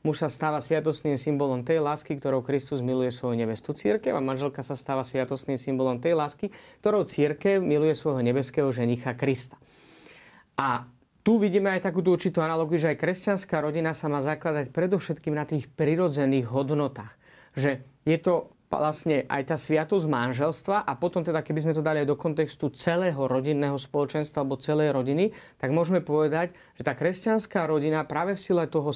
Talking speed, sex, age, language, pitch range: 170 wpm, male, 30-49, Slovak, 140-175 Hz